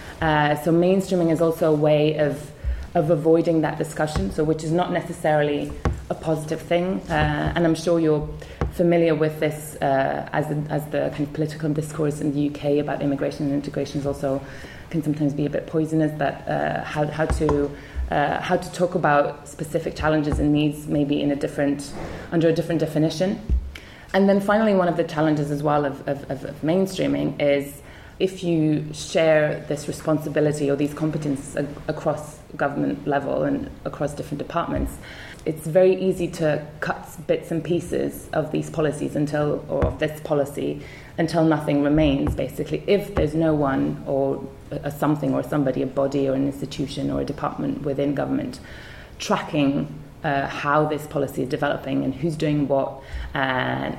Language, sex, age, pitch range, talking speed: English, female, 20-39, 140-160 Hz, 170 wpm